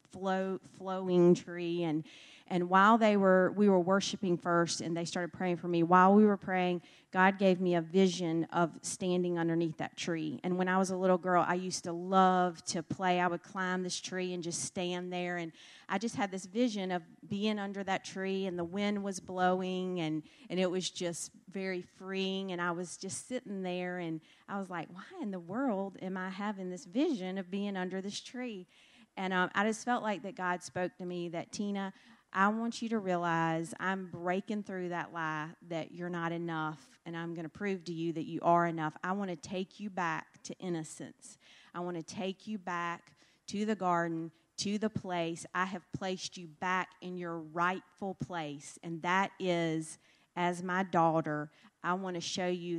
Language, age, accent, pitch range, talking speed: English, 40-59, American, 170-190 Hz, 205 wpm